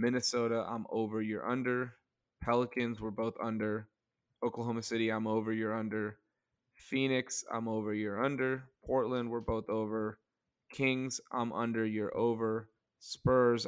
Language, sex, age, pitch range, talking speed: English, male, 20-39, 110-125 Hz, 130 wpm